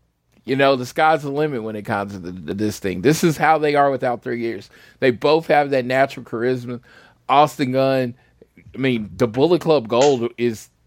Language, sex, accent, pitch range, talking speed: English, male, American, 115-150 Hz, 195 wpm